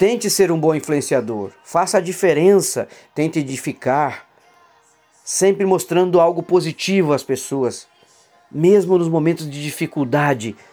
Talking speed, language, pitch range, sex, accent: 115 wpm, Portuguese, 145-195 Hz, male, Brazilian